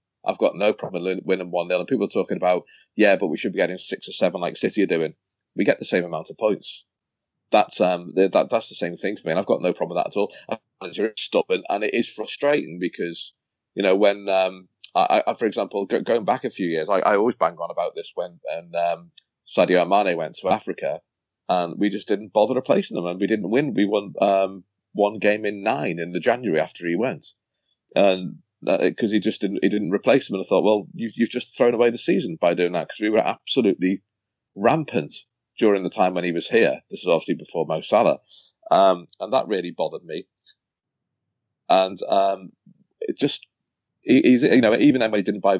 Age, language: 30-49, English